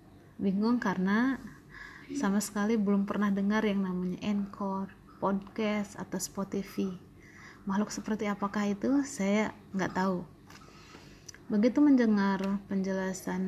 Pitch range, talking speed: 195-230 Hz, 105 wpm